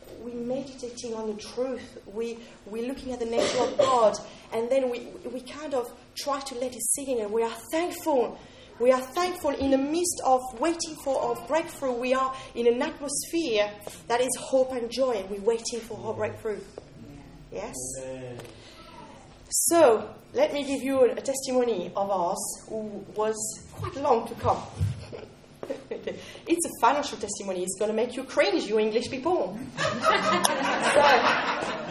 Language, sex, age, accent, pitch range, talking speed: English, female, 30-49, French, 215-275 Hz, 160 wpm